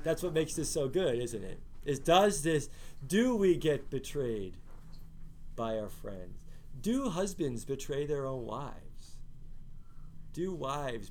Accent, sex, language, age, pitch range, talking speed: American, male, English, 40-59, 130-180 Hz, 140 wpm